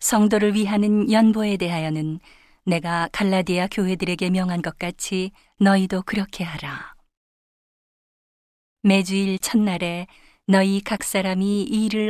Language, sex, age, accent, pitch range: Korean, female, 40-59, native, 175-200 Hz